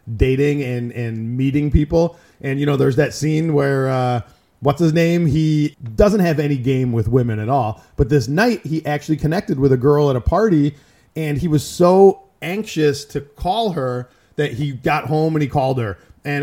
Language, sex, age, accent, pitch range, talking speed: English, male, 30-49, American, 140-180 Hz, 195 wpm